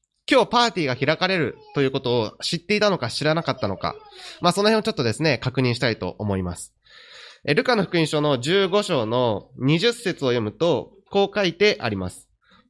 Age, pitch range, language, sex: 20-39, 110-180 Hz, Japanese, male